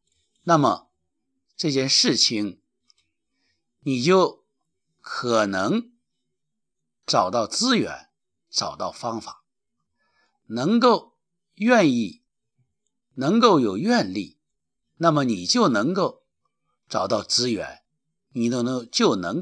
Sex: male